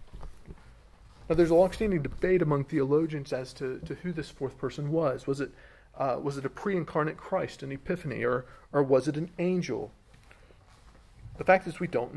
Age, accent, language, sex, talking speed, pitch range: 40-59, American, English, male, 180 wpm, 115-160 Hz